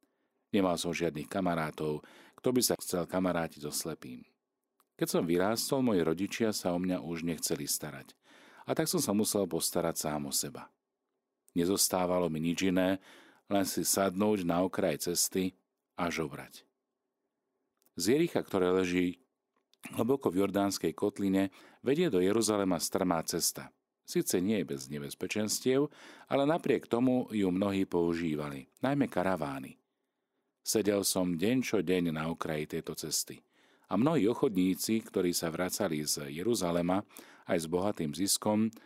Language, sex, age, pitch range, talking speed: Slovak, male, 40-59, 80-105 Hz, 140 wpm